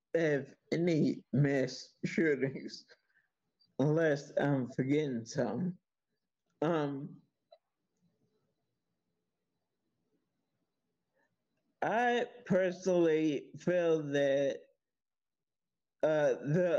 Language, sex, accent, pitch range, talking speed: English, male, American, 140-190 Hz, 55 wpm